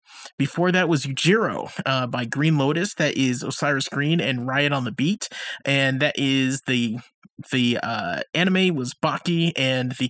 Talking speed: 160 wpm